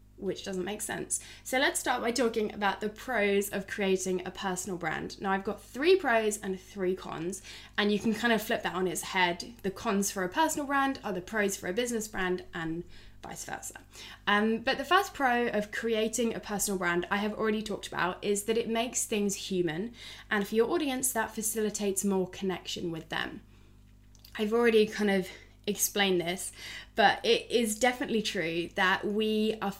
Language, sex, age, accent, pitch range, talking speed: English, female, 10-29, British, 190-230 Hz, 195 wpm